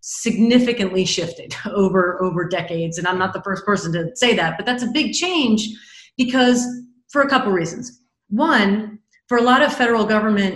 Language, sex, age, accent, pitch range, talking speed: English, female, 30-49, American, 190-240 Hz, 175 wpm